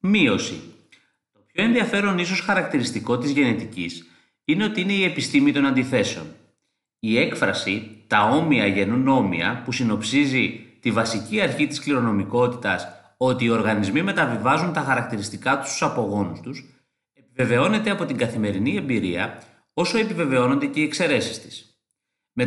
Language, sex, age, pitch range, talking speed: Greek, male, 30-49, 110-160 Hz, 135 wpm